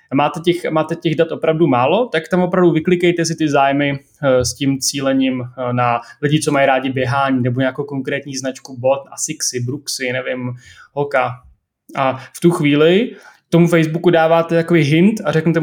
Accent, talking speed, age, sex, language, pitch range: native, 175 wpm, 20-39, male, Czech, 135-170 Hz